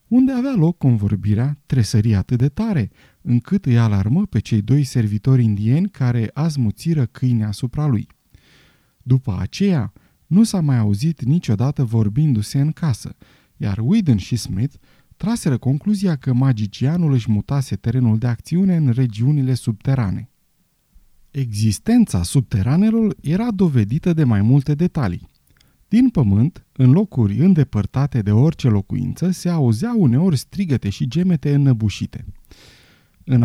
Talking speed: 125 wpm